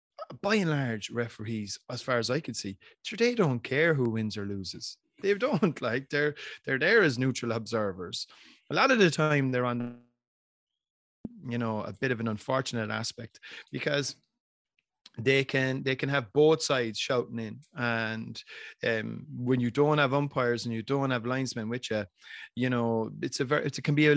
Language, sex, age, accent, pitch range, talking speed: English, male, 30-49, Irish, 115-145 Hz, 185 wpm